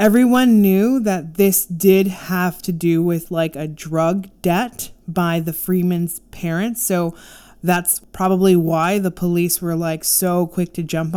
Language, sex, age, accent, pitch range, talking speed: English, female, 20-39, American, 170-205 Hz, 155 wpm